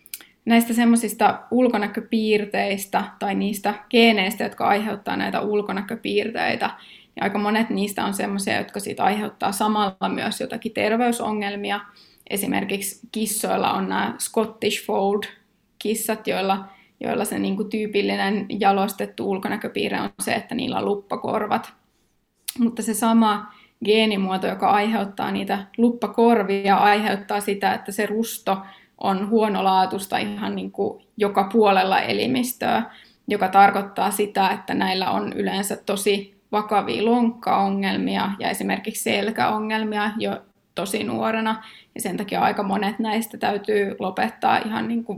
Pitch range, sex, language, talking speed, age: 200-225 Hz, female, Finnish, 120 wpm, 20-39